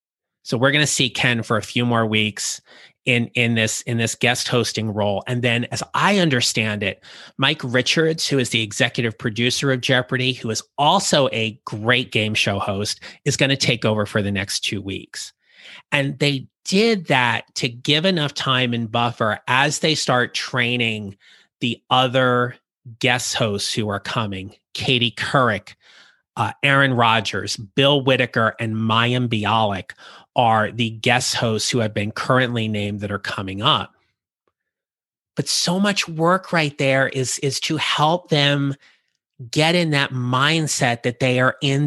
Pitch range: 115-145 Hz